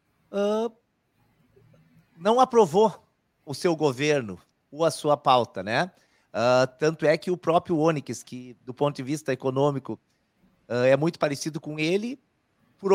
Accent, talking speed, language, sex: Brazilian, 130 wpm, Portuguese, male